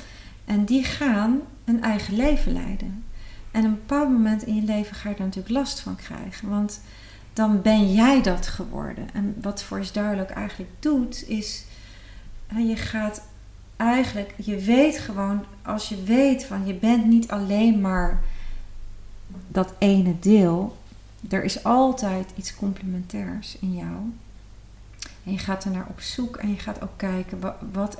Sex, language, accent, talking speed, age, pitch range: female, Dutch, Dutch, 160 wpm, 40-59, 185-225 Hz